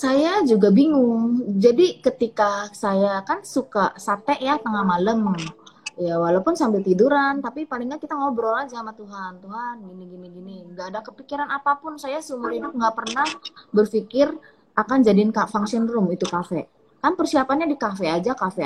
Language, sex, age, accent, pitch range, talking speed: Indonesian, female, 20-39, native, 195-275 Hz, 160 wpm